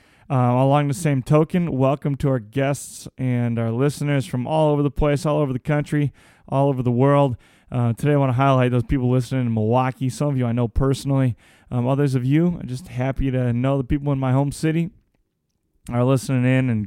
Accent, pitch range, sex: American, 120-145 Hz, male